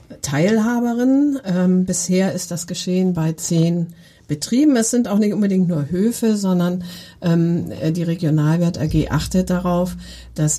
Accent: German